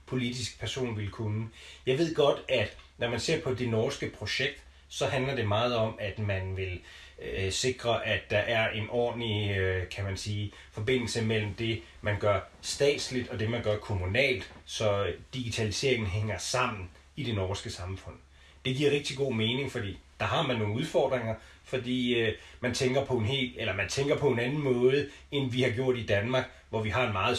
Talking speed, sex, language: 185 wpm, male, Danish